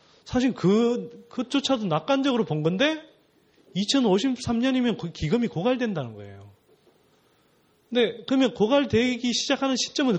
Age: 30-49